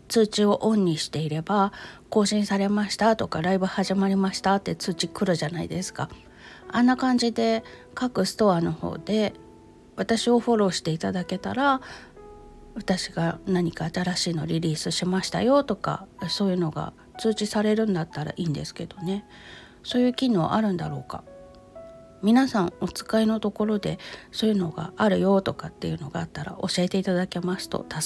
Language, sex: Japanese, female